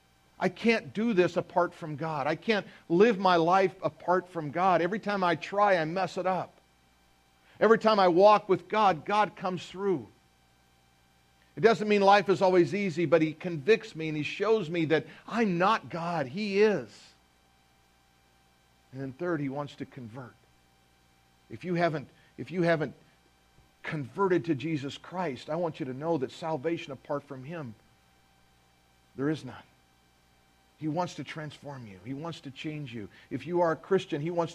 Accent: American